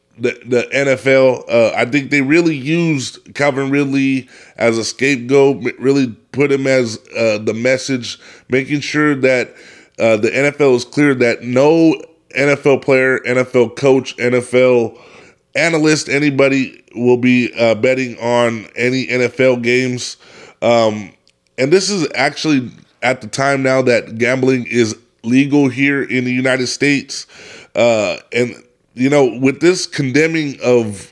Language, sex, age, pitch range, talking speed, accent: English, male, 20-39, 120-140 Hz, 140 wpm, American